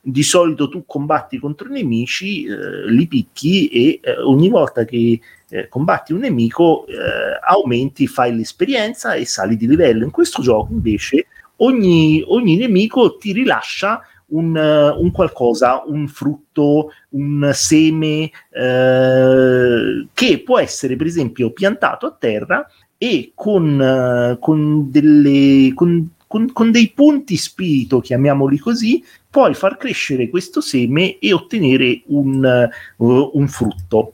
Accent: native